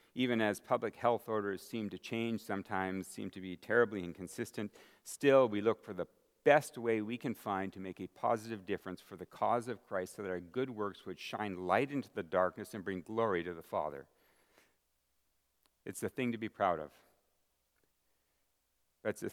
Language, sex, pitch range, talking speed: English, male, 95-120 Hz, 185 wpm